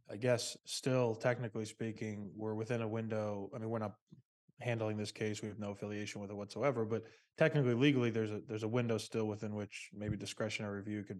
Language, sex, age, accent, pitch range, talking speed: English, male, 20-39, American, 105-120 Hz, 205 wpm